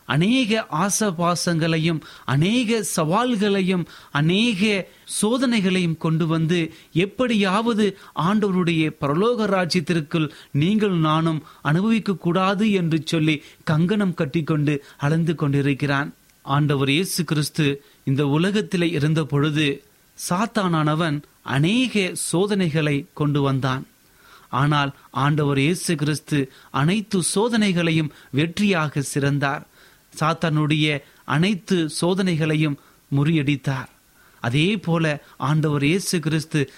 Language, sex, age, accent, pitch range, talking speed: Tamil, male, 30-49, native, 145-180 Hz, 85 wpm